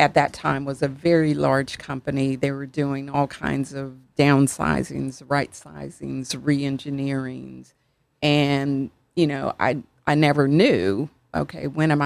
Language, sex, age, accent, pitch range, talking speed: English, female, 40-59, American, 135-150 Hz, 140 wpm